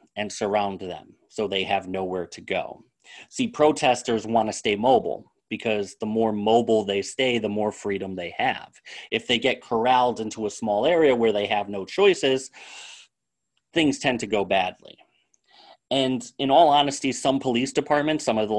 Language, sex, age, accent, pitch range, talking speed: English, male, 30-49, American, 105-135 Hz, 175 wpm